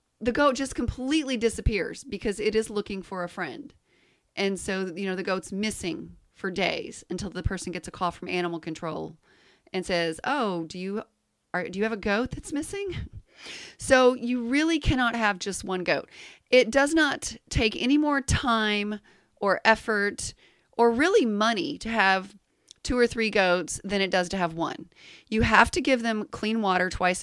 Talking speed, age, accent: 185 wpm, 30-49, American